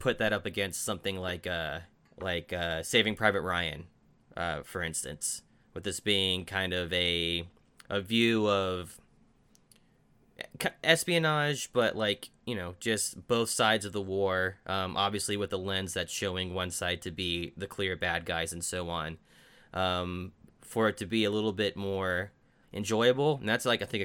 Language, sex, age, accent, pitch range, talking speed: English, male, 20-39, American, 90-110 Hz, 170 wpm